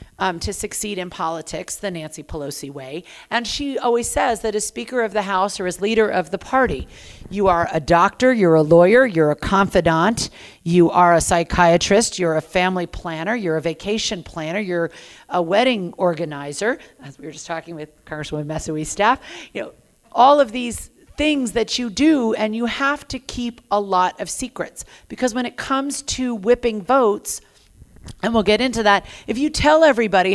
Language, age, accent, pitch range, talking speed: English, 50-69, American, 170-225 Hz, 185 wpm